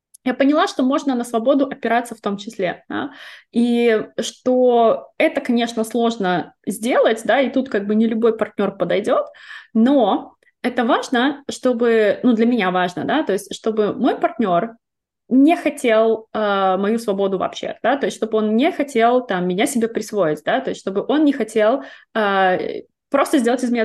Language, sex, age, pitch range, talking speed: Russian, female, 20-39, 205-255 Hz, 175 wpm